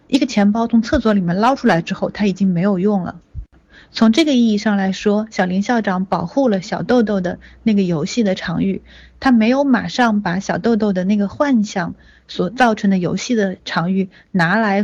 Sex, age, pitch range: female, 30-49, 190-235 Hz